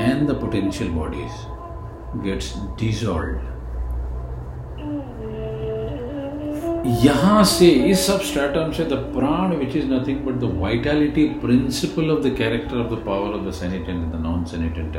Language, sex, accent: Hindi, male, native